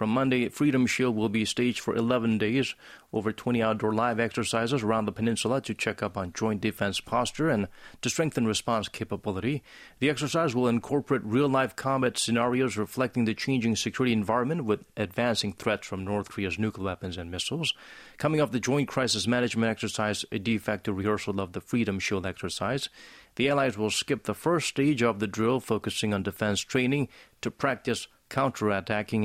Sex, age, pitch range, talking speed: male, 30-49, 105-125 Hz, 175 wpm